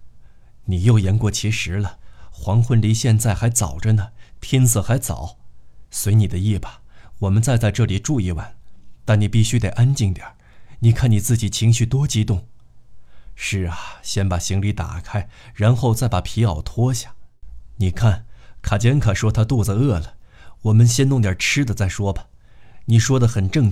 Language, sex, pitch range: Chinese, male, 100-120 Hz